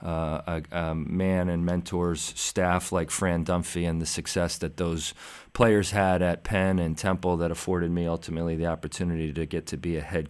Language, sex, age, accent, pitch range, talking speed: English, male, 40-59, American, 85-95 Hz, 190 wpm